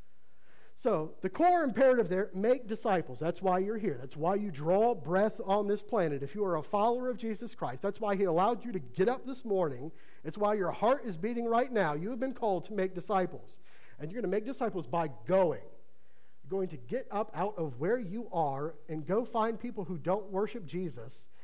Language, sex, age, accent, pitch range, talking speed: English, male, 50-69, American, 145-205 Hz, 220 wpm